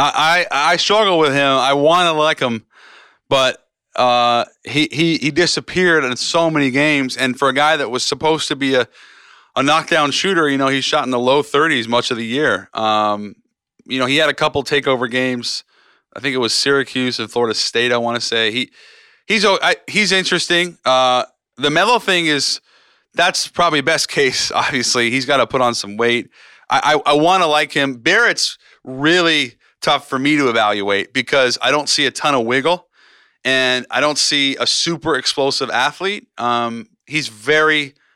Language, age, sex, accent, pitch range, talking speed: English, 30-49, male, American, 120-150 Hz, 190 wpm